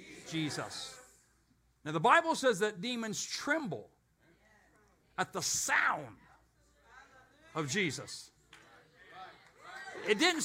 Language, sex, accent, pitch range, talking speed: English, male, American, 150-235 Hz, 85 wpm